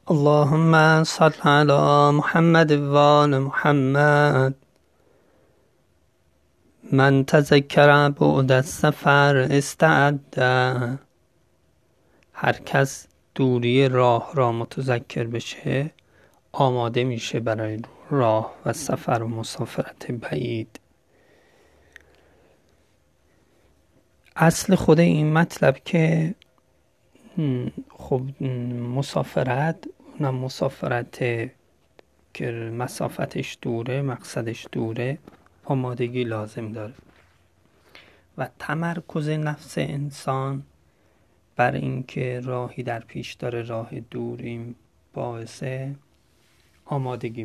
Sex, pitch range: male, 115-145 Hz